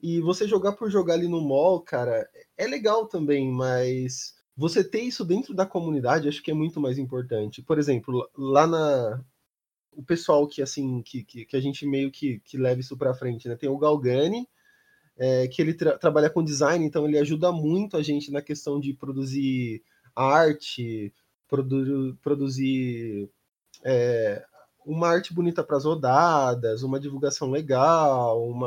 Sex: male